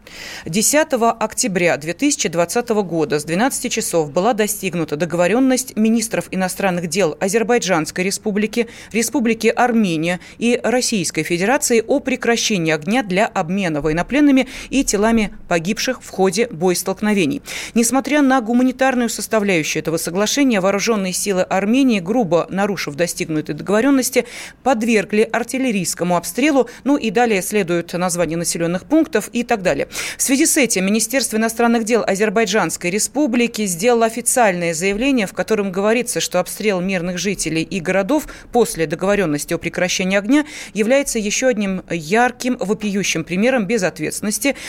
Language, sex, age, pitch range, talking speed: Russian, female, 30-49, 180-240 Hz, 120 wpm